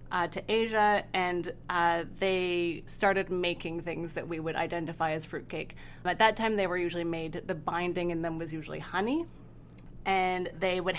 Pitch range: 170-205 Hz